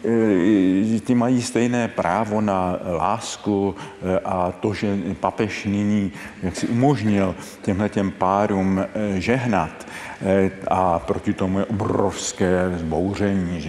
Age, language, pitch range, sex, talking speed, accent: 50-69, Czech, 90-105 Hz, male, 90 wpm, native